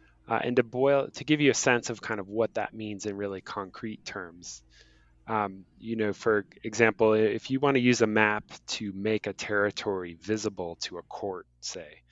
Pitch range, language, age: 95-120 Hz, English, 20-39